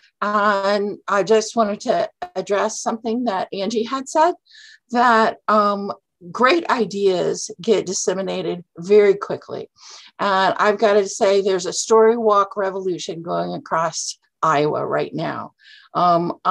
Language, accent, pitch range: English, American, 190-225 Hz